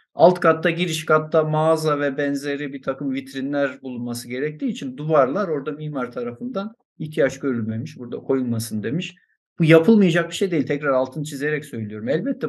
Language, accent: Turkish, native